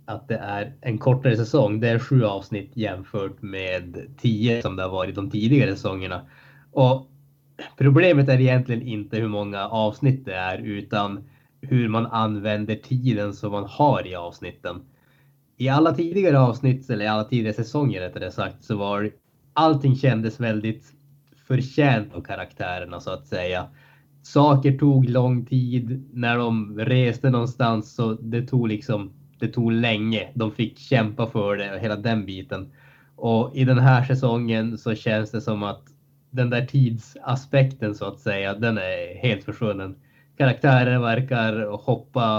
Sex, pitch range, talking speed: male, 105-135 Hz, 155 wpm